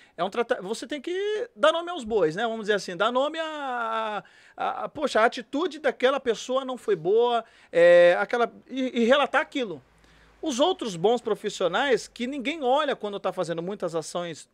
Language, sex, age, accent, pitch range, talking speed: Portuguese, male, 40-59, Brazilian, 175-240 Hz, 185 wpm